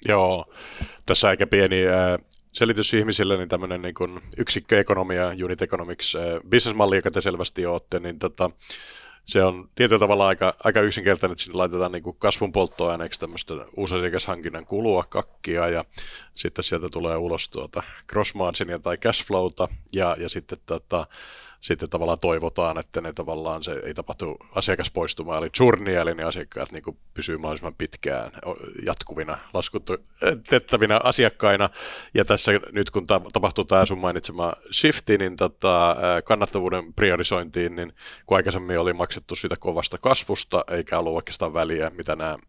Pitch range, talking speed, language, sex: 85-100 Hz, 135 wpm, Finnish, male